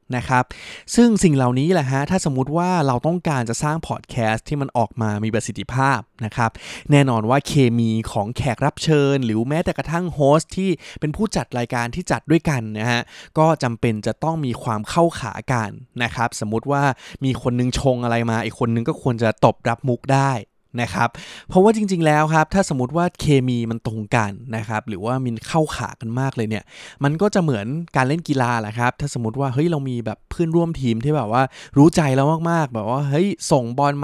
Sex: male